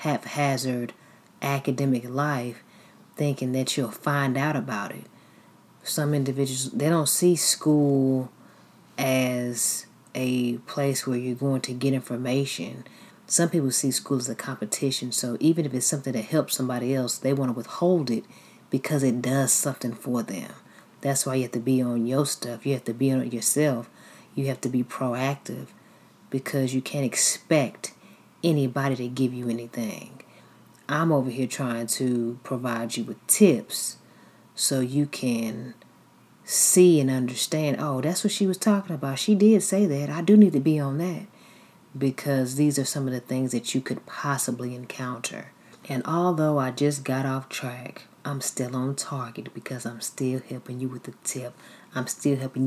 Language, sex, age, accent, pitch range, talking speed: English, female, 30-49, American, 125-145 Hz, 170 wpm